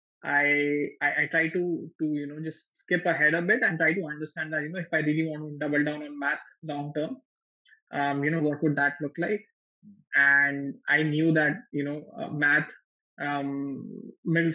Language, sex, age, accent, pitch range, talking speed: English, male, 20-39, Indian, 145-165 Hz, 200 wpm